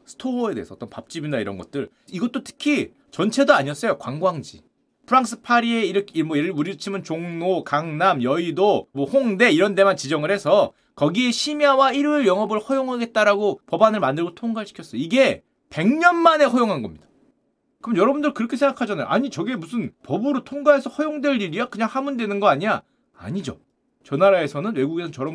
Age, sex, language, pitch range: 30-49, male, Korean, 195-280 Hz